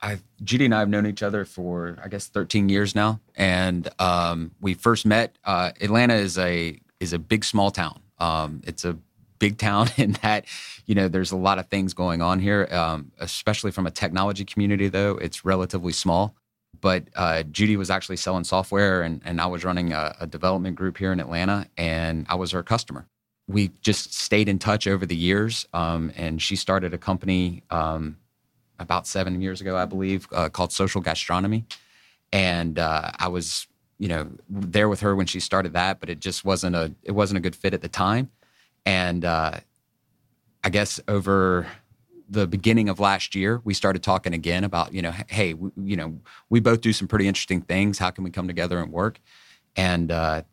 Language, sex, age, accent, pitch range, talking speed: English, male, 30-49, American, 90-100 Hz, 200 wpm